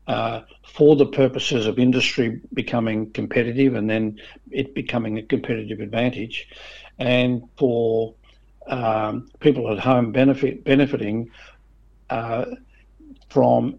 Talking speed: 110 wpm